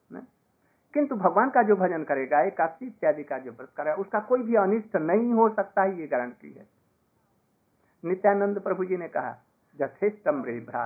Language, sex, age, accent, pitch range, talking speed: Hindi, male, 60-79, native, 140-215 Hz, 150 wpm